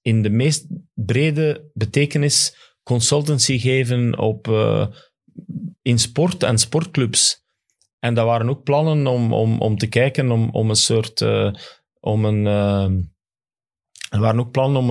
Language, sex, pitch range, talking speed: Dutch, male, 110-135 Hz, 145 wpm